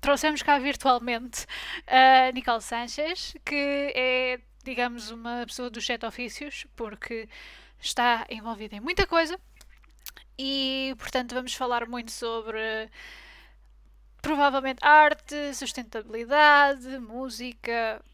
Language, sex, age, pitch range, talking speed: Portuguese, female, 10-29, 235-275 Hz, 100 wpm